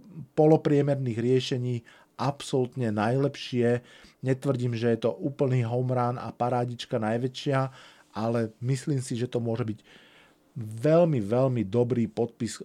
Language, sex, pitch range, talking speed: Slovak, male, 115-135 Hz, 115 wpm